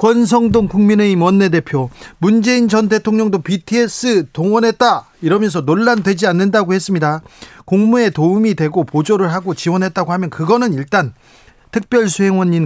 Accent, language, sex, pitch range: native, Korean, male, 150-210 Hz